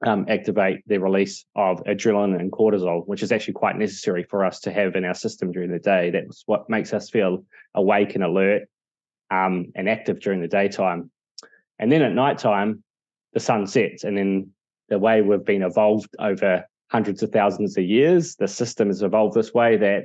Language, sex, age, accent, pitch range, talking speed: English, male, 20-39, Australian, 95-110 Hz, 190 wpm